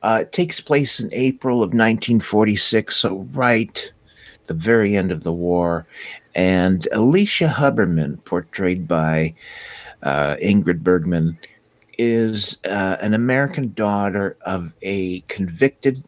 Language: English